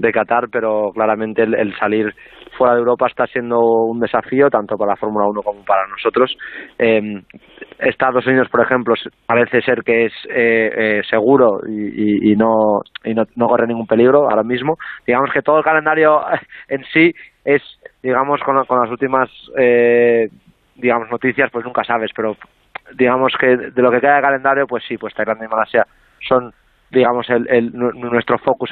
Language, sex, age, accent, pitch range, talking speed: Spanish, male, 20-39, Spanish, 110-125 Hz, 180 wpm